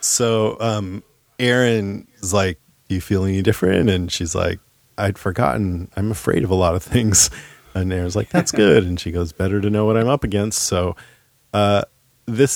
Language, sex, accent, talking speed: English, male, American, 190 wpm